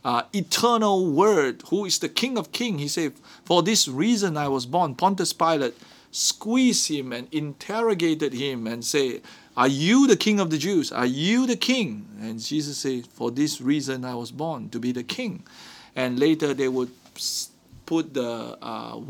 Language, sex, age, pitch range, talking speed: English, male, 50-69, 135-195 Hz, 180 wpm